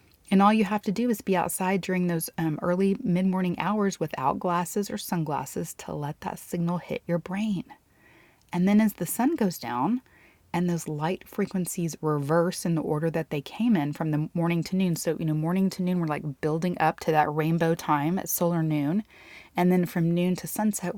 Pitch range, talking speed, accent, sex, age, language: 160-195 Hz, 210 wpm, American, female, 30-49, English